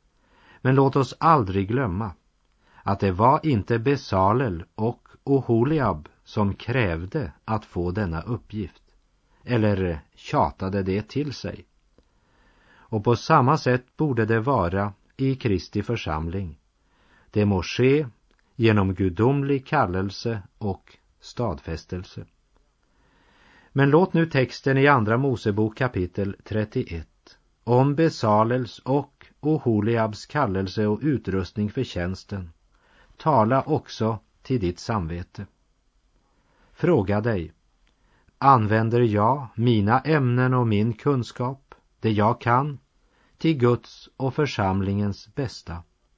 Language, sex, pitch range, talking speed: French, male, 100-130 Hz, 105 wpm